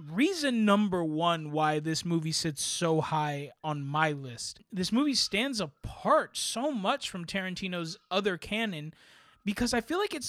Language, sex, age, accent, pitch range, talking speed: English, male, 20-39, American, 155-200 Hz, 155 wpm